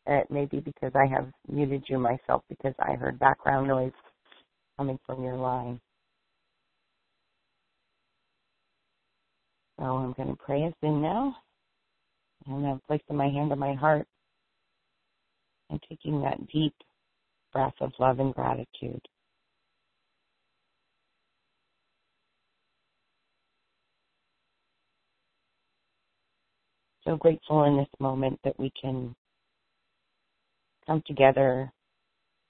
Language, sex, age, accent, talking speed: English, female, 40-59, American, 100 wpm